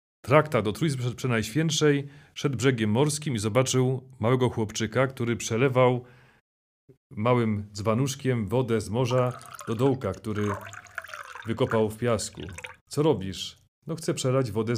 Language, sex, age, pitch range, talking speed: Polish, male, 40-59, 105-130 Hz, 120 wpm